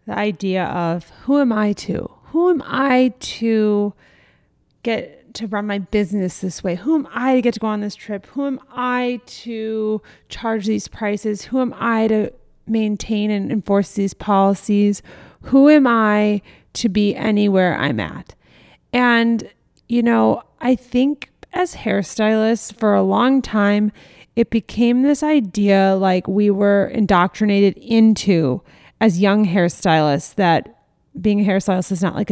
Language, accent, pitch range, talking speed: English, American, 195-230 Hz, 150 wpm